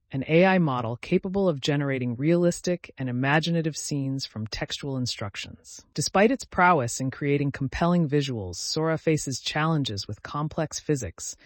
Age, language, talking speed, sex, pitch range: 30-49, English, 135 wpm, female, 120-160 Hz